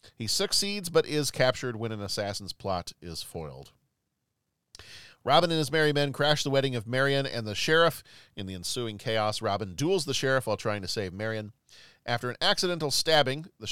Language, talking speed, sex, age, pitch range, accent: English, 185 wpm, male, 40-59, 105-135 Hz, American